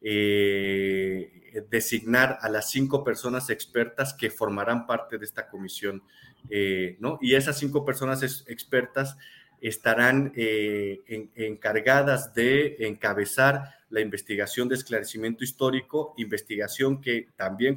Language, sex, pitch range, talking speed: Spanish, male, 105-130 Hz, 115 wpm